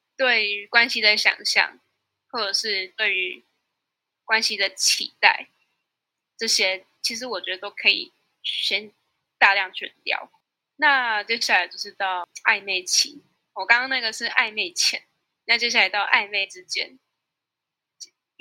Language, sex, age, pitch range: Chinese, female, 10-29, 200-255 Hz